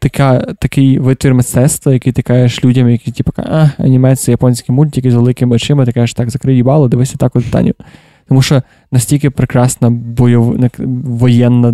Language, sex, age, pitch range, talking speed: Ukrainian, male, 20-39, 120-130 Hz, 175 wpm